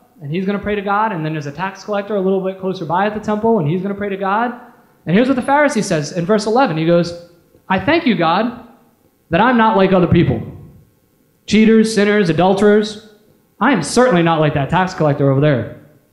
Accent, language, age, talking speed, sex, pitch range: American, English, 20-39, 230 wpm, male, 150-210 Hz